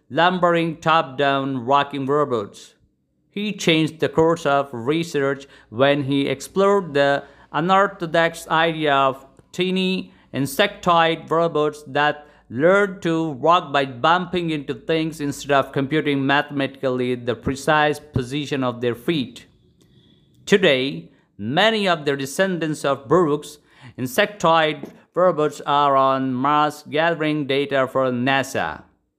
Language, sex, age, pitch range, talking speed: English, male, 50-69, 130-165 Hz, 110 wpm